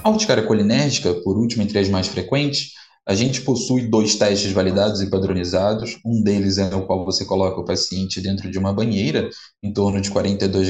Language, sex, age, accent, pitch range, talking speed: Portuguese, male, 20-39, Brazilian, 100-120 Hz, 185 wpm